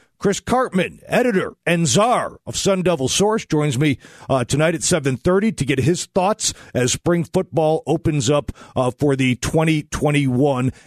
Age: 40-59